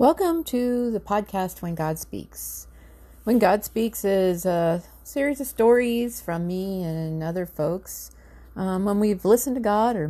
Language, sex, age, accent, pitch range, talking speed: English, female, 40-59, American, 130-210 Hz, 160 wpm